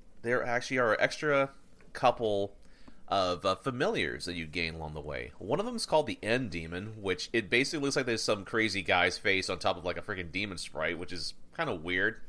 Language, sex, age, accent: English, male, 30-49, American